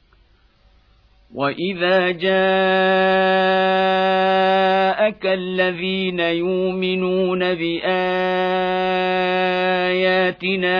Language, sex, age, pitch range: Arabic, male, 50-69, 160-185 Hz